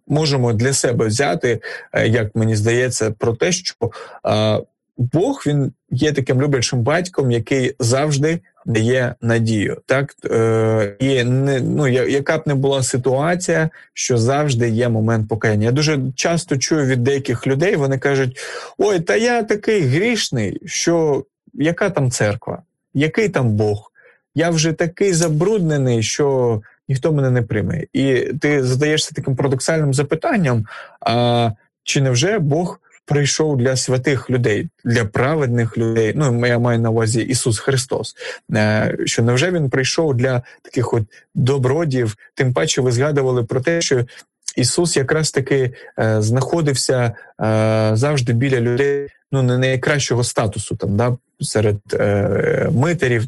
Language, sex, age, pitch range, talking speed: Ukrainian, male, 20-39, 115-145 Hz, 135 wpm